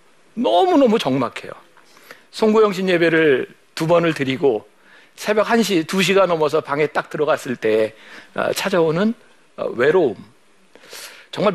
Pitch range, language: 140-225 Hz, Korean